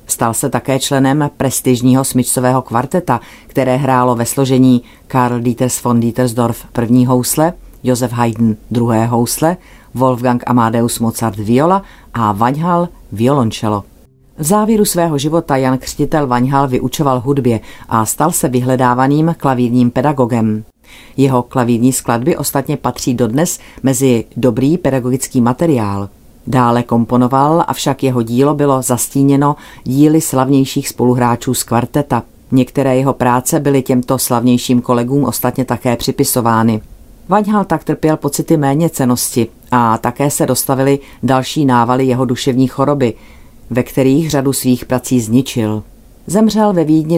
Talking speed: 125 wpm